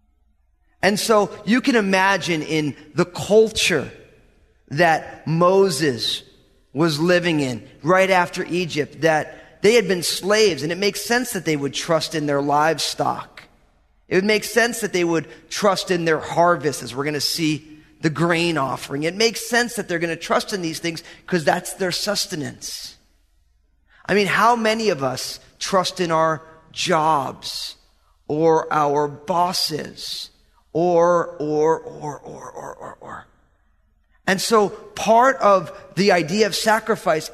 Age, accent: 30-49, American